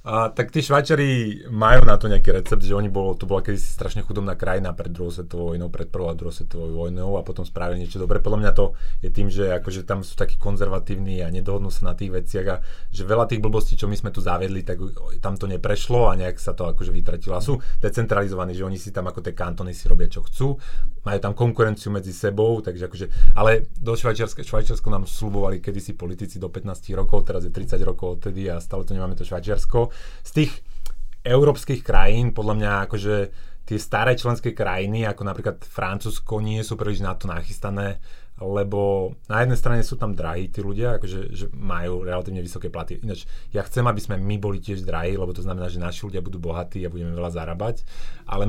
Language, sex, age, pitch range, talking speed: Slovak, male, 30-49, 90-110 Hz, 210 wpm